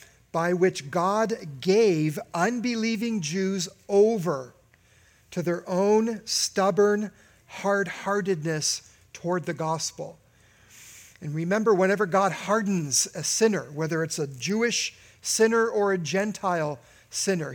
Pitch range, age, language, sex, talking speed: 130-200 Hz, 50-69, English, male, 105 wpm